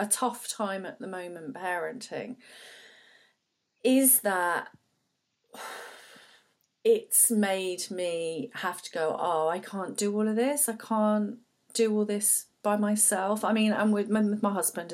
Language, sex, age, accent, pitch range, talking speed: English, female, 40-59, British, 185-225 Hz, 145 wpm